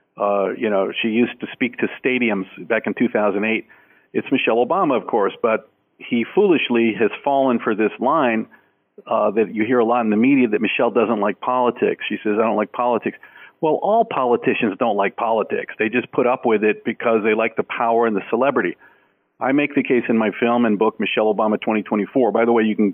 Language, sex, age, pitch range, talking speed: English, male, 50-69, 110-130 Hz, 215 wpm